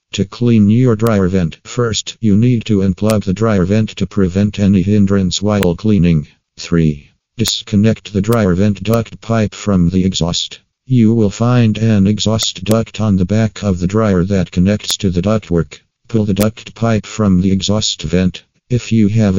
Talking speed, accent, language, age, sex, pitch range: 175 wpm, American, English, 50-69, male, 95-110 Hz